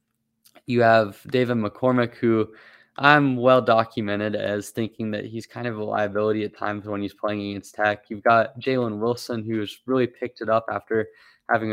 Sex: male